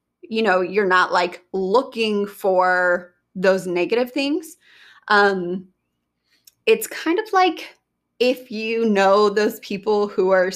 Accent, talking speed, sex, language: American, 125 wpm, female, English